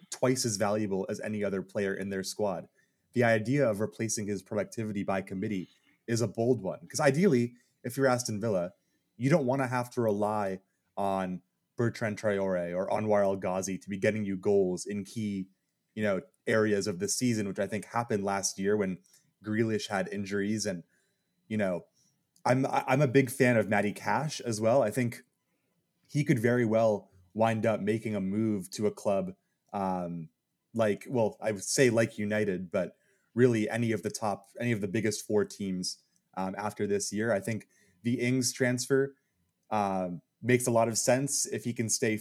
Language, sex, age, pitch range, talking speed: English, male, 20-39, 100-125 Hz, 185 wpm